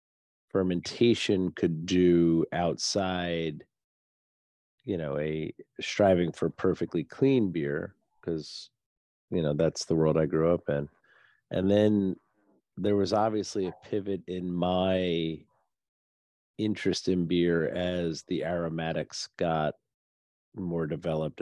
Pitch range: 75-90 Hz